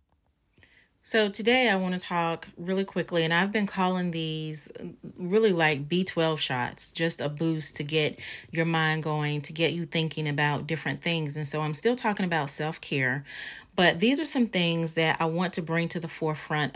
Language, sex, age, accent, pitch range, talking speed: English, female, 30-49, American, 155-190 Hz, 185 wpm